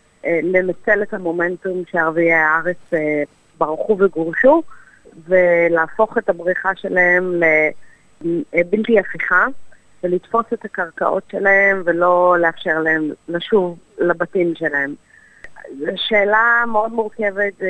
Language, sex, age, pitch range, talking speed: English, female, 30-49, 170-200 Hz, 90 wpm